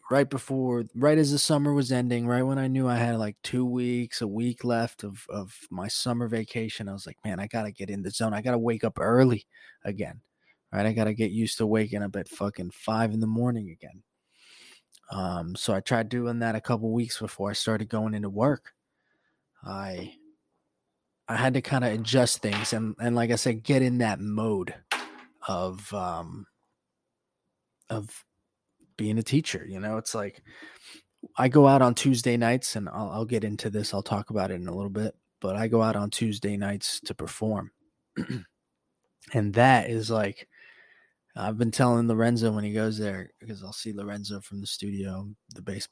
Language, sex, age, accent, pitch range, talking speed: English, male, 20-39, American, 105-120 Hz, 200 wpm